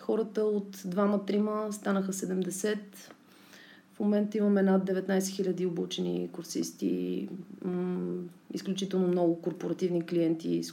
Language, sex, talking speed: Bulgarian, female, 105 wpm